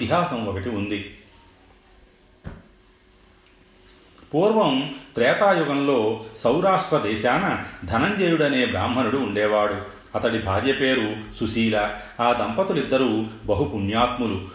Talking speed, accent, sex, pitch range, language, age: 65 wpm, native, male, 105-135 Hz, Telugu, 40-59